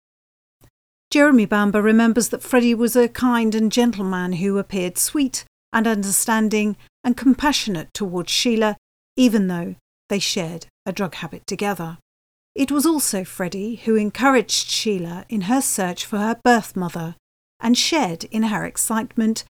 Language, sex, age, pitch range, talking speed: English, female, 40-59, 190-245 Hz, 145 wpm